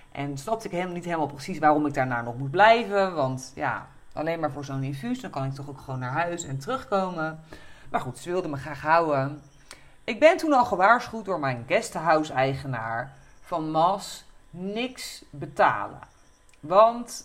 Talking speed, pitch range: 170 wpm, 140-195 Hz